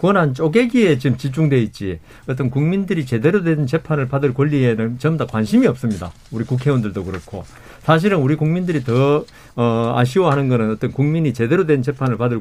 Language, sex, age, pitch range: Korean, male, 40-59, 120-180 Hz